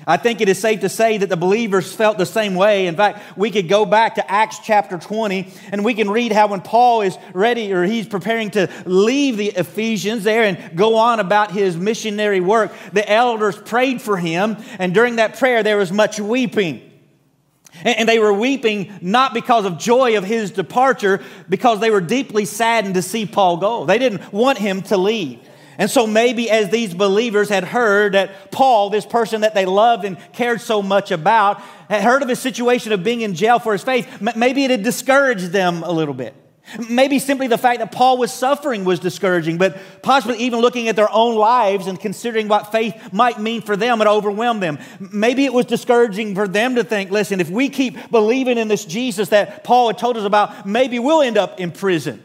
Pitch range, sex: 195-235 Hz, male